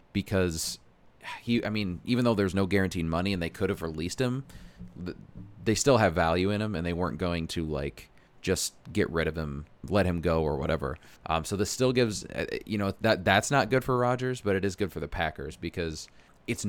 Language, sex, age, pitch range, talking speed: English, male, 20-39, 85-110 Hz, 215 wpm